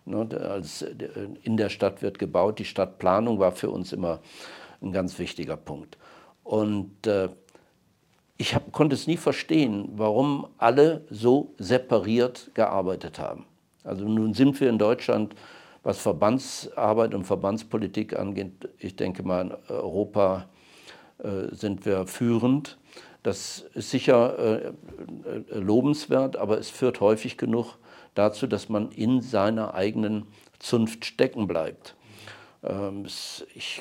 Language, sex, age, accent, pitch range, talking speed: German, male, 50-69, German, 100-120 Hz, 115 wpm